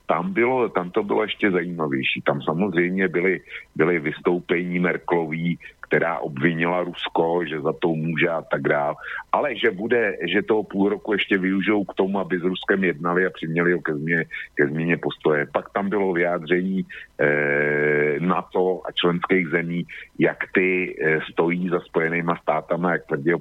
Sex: male